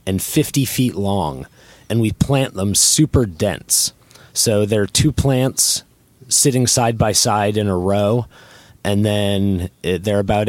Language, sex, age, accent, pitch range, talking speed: English, male, 30-49, American, 95-120 Hz, 150 wpm